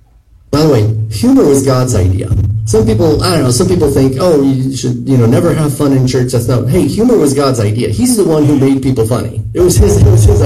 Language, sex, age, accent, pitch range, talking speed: English, male, 40-59, American, 105-135 Hz, 260 wpm